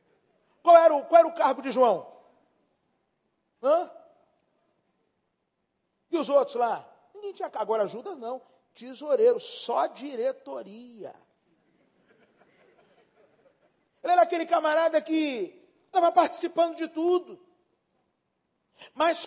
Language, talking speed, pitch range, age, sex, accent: Portuguese, 100 wpm, 280-330 Hz, 50-69, male, Brazilian